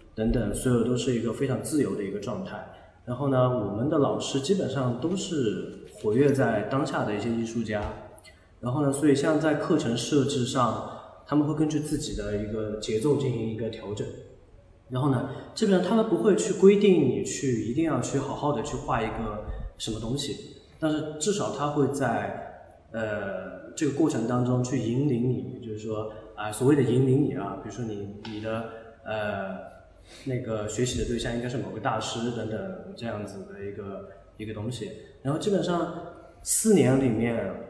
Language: Chinese